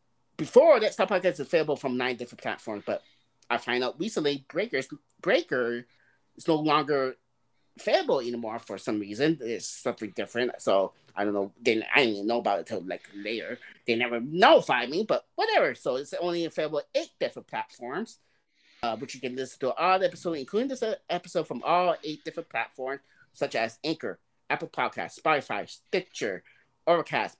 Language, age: English, 30-49